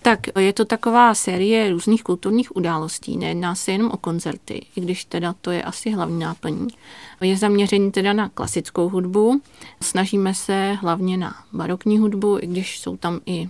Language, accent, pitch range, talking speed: Czech, native, 180-210 Hz, 170 wpm